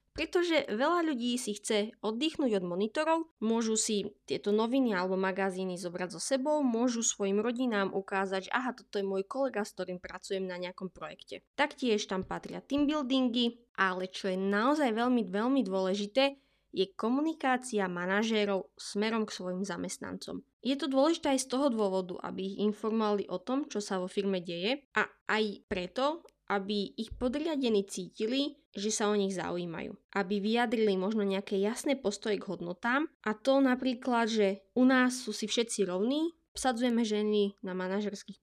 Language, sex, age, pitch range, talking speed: Slovak, female, 20-39, 200-255 Hz, 160 wpm